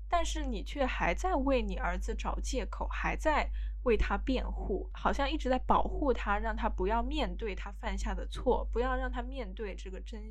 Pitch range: 190-250 Hz